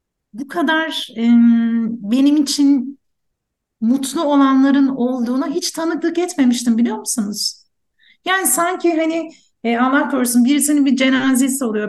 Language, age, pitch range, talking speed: Turkish, 50-69, 220-285 Hz, 115 wpm